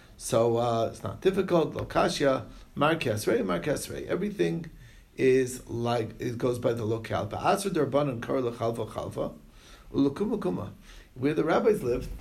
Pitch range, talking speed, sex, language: 120-165 Hz, 125 wpm, male, English